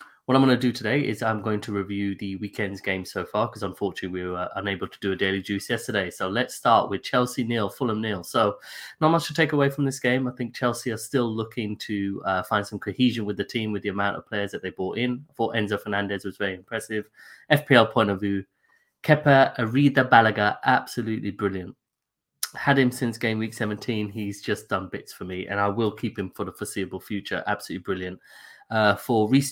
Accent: British